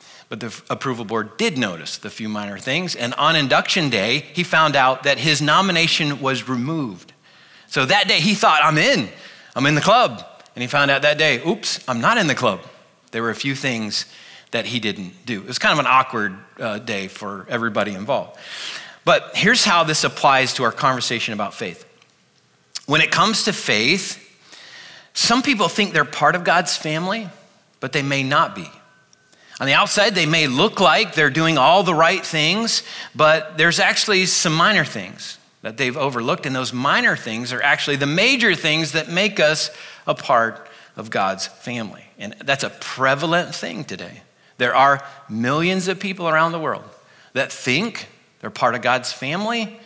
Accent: American